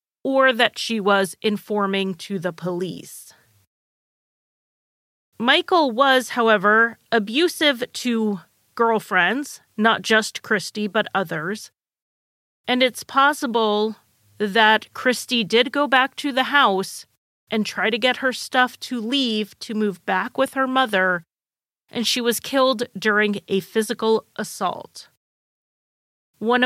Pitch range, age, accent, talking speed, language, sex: 195-240 Hz, 30-49, American, 120 wpm, English, female